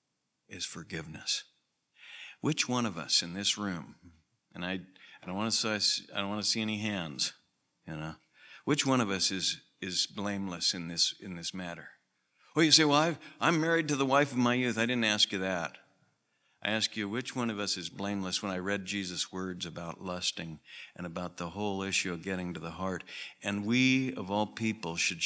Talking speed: 205 wpm